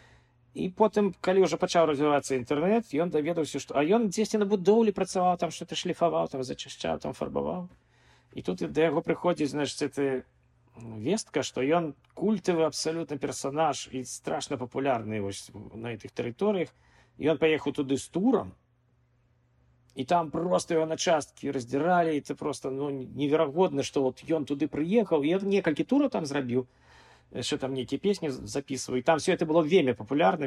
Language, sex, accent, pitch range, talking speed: Russian, male, native, 125-170 Hz, 160 wpm